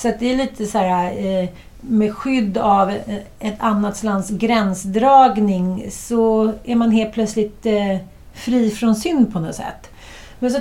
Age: 40-59